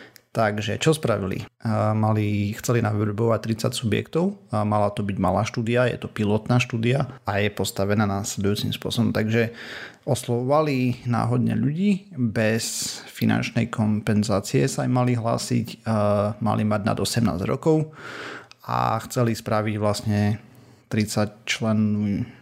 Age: 30-49